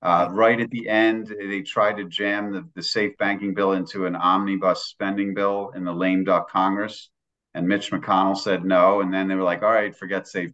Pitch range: 95-115 Hz